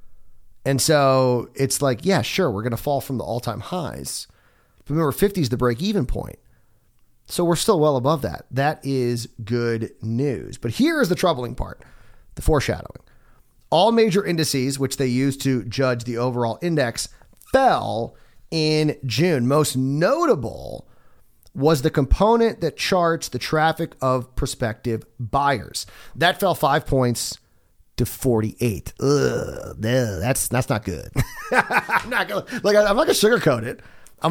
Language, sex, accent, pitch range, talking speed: English, male, American, 120-155 Hz, 145 wpm